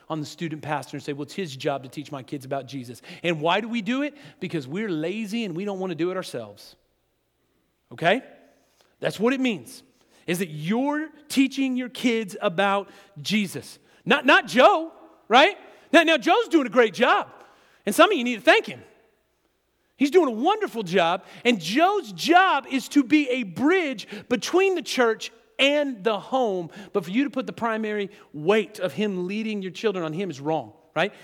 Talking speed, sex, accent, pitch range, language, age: 195 wpm, male, American, 160-245 Hz, English, 40-59